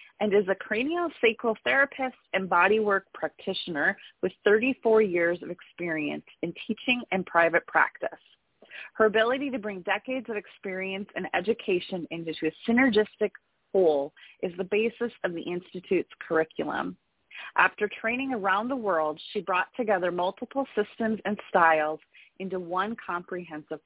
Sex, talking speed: female, 135 wpm